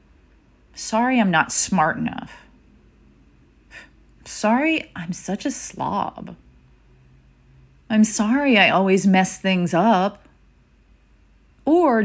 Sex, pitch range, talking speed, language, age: female, 160-235 Hz, 90 wpm, English, 30-49